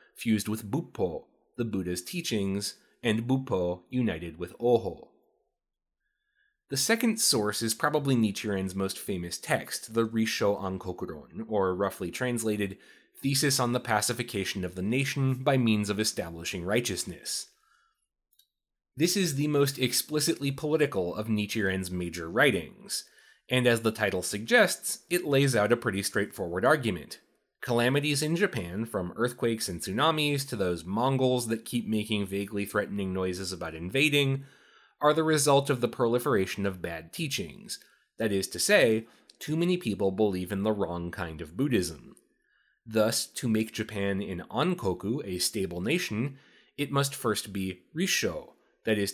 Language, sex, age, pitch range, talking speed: English, male, 30-49, 95-135 Hz, 145 wpm